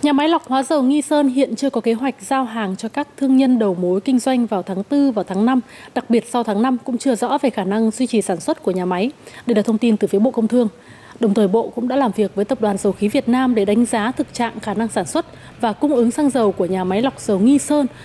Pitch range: 210-270 Hz